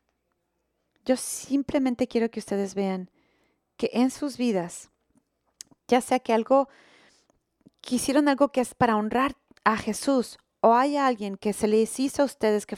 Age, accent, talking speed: 30-49, Mexican, 150 wpm